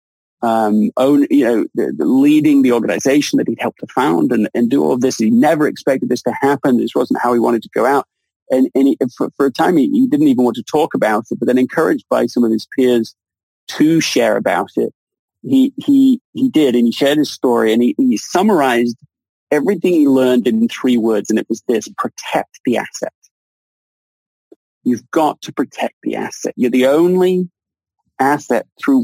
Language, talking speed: English, 205 wpm